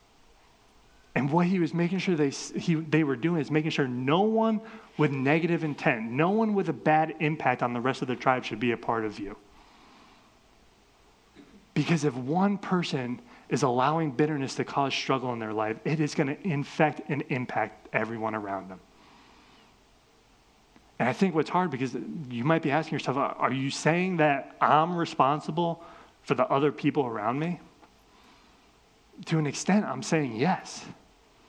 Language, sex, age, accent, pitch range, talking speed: English, male, 30-49, American, 140-175 Hz, 170 wpm